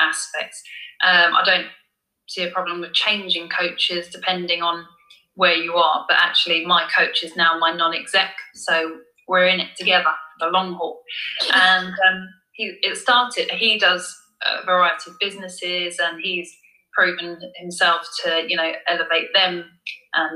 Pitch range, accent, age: 170-190 Hz, British, 20-39